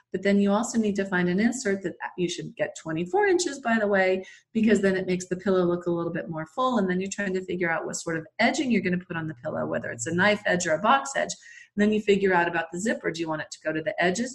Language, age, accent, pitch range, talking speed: English, 40-59, American, 175-225 Hz, 310 wpm